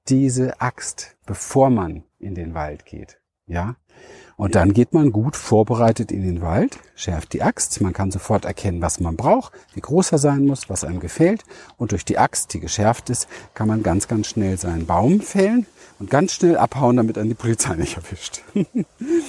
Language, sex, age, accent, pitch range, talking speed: German, male, 40-59, German, 100-140 Hz, 185 wpm